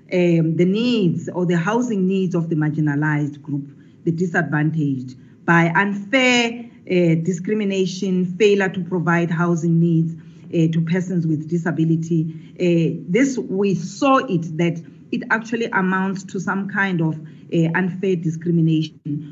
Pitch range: 165-215 Hz